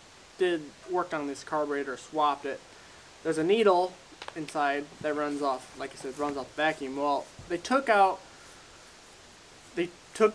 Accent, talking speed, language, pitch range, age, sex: American, 155 wpm, English, 145-180 Hz, 20-39, male